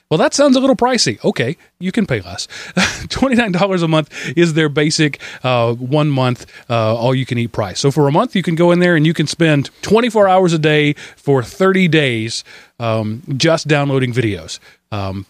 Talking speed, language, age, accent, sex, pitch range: 180 wpm, English, 30-49, American, male, 120-160 Hz